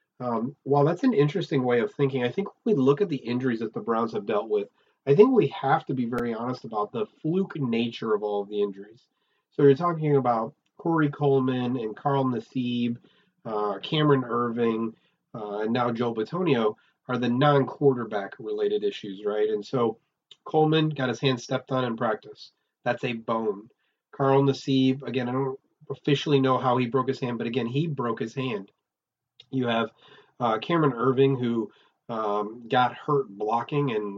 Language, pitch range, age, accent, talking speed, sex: English, 115-140 Hz, 30-49, American, 185 wpm, male